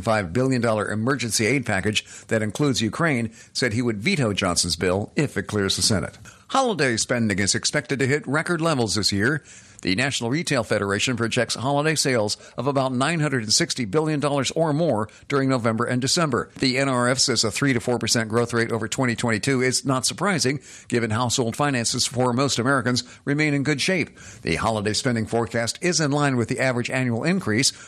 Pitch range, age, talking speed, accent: 115-140 Hz, 50-69, 175 wpm, American